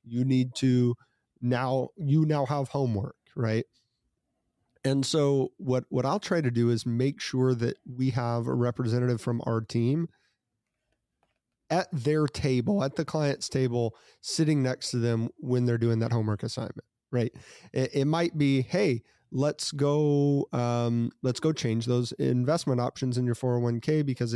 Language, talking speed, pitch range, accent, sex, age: English, 160 wpm, 115-140 Hz, American, male, 30-49